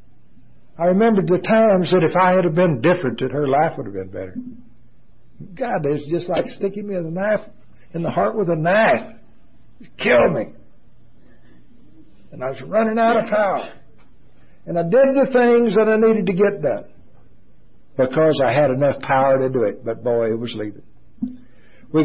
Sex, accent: male, American